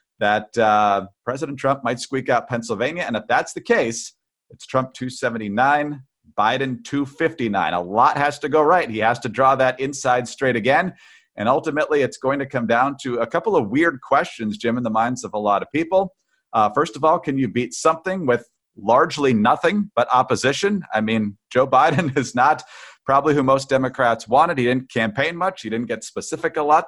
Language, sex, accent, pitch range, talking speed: English, male, American, 120-150 Hz, 195 wpm